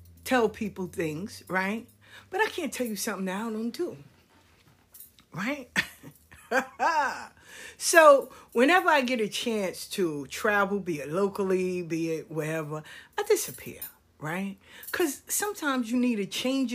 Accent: American